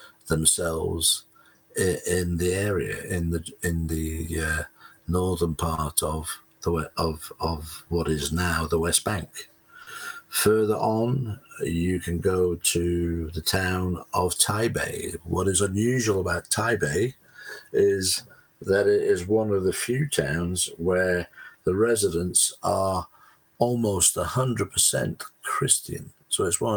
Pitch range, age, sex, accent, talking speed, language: 85-100 Hz, 60-79, male, British, 130 wpm, English